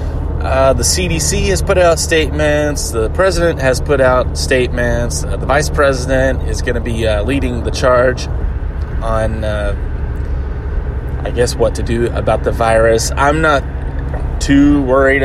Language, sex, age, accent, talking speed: English, male, 20-39, American, 150 wpm